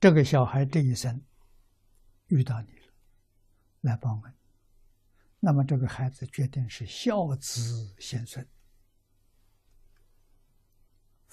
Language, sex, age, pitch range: Chinese, male, 60-79, 100-130 Hz